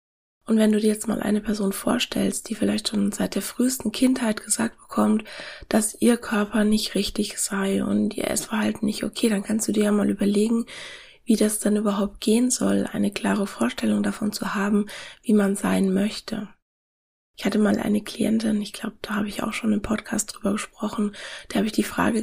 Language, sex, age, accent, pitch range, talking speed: German, female, 20-39, German, 205-230 Hz, 195 wpm